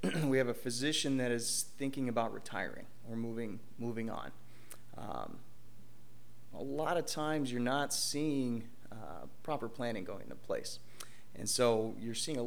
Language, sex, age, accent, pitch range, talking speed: English, male, 30-49, American, 115-125 Hz, 155 wpm